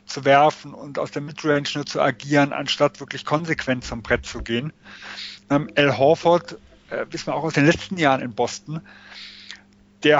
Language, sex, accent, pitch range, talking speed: German, male, German, 135-170 Hz, 175 wpm